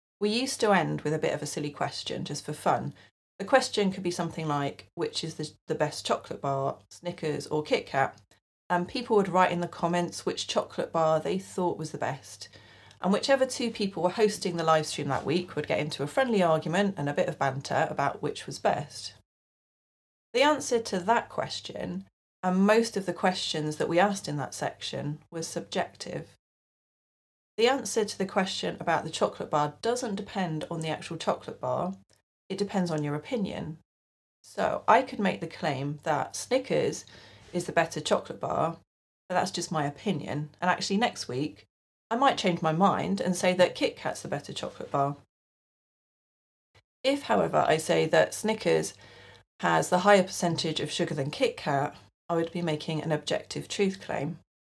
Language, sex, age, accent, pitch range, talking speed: English, female, 30-49, British, 150-200 Hz, 185 wpm